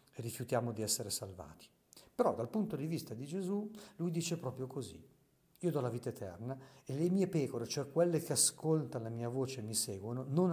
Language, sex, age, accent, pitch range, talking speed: Italian, male, 50-69, native, 115-150 Hz, 200 wpm